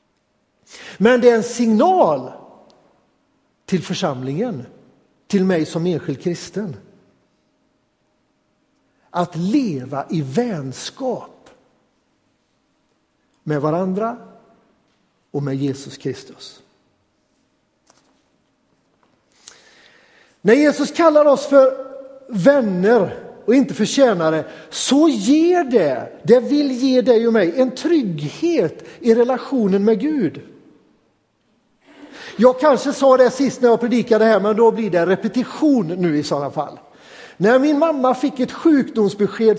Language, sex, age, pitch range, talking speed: Swedish, male, 60-79, 205-270 Hz, 110 wpm